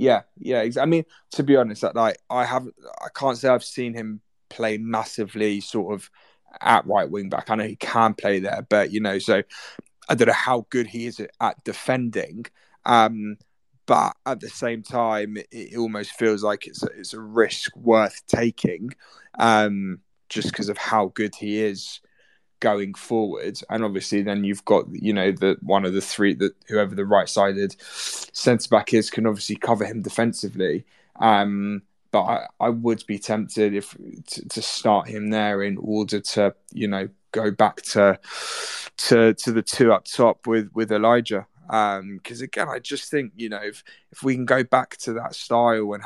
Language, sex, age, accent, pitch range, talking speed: English, male, 20-39, British, 100-115 Hz, 190 wpm